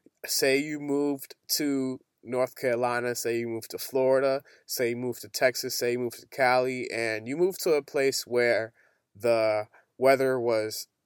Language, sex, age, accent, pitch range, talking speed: English, male, 20-39, American, 120-140 Hz, 170 wpm